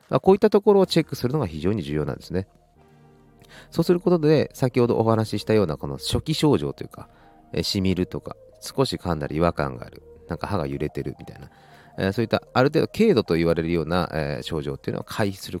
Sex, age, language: male, 40-59, Japanese